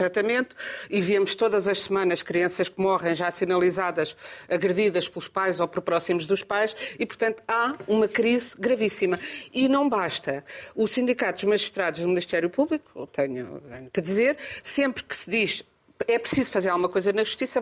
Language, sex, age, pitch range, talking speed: Portuguese, female, 50-69, 185-260 Hz, 165 wpm